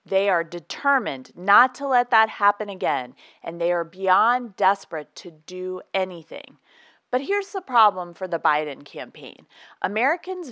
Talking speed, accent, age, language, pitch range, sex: 150 wpm, American, 30-49, English, 185-245 Hz, female